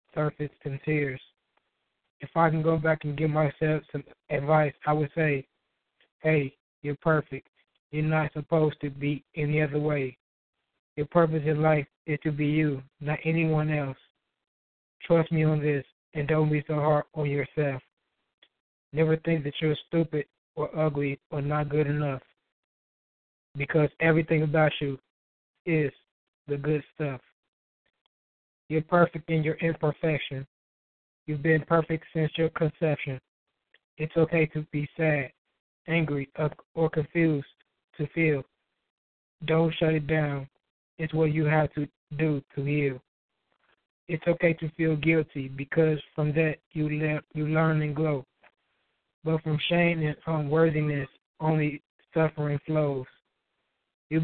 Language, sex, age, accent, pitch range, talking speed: English, male, 20-39, American, 145-160 Hz, 135 wpm